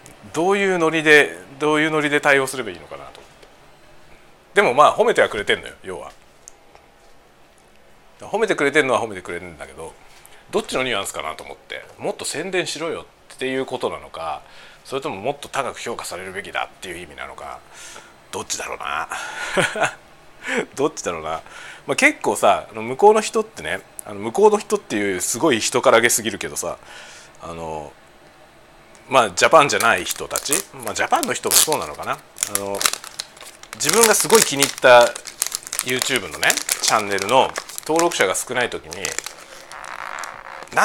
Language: Japanese